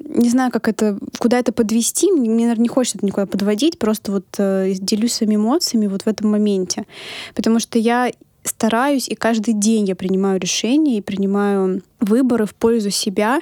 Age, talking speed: 20-39, 175 wpm